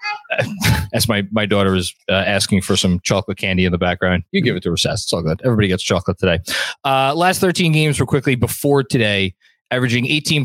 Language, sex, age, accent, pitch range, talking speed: English, male, 20-39, American, 100-125 Hz, 210 wpm